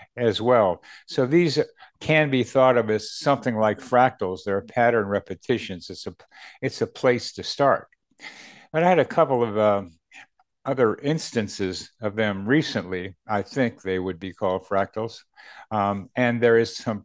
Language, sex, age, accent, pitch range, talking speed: English, male, 60-79, American, 100-135 Hz, 160 wpm